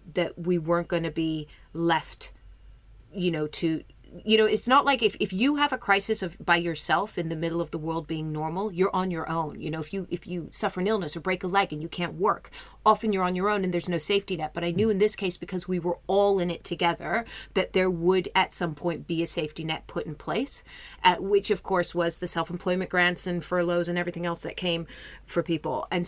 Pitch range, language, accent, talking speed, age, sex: 170-200 Hz, English, American, 245 wpm, 30-49, female